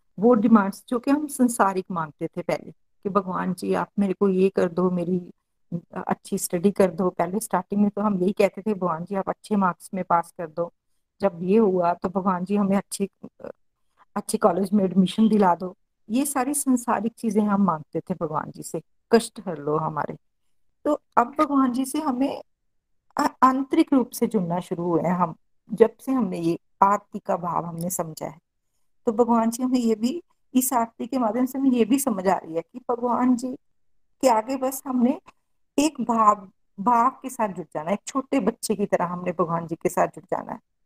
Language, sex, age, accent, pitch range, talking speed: Hindi, female, 50-69, native, 185-240 Hz, 200 wpm